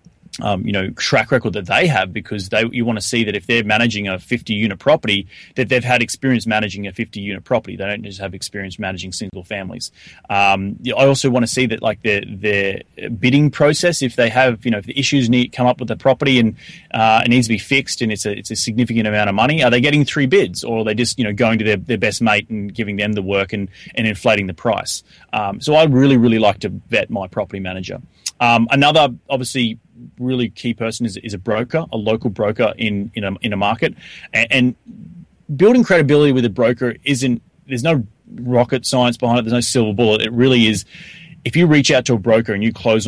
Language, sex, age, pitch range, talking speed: English, male, 20-39, 105-125 Hz, 235 wpm